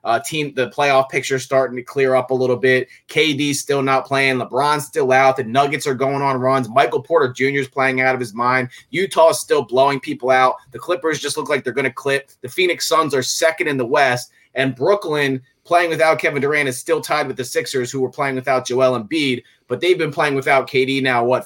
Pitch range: 125-145 Hz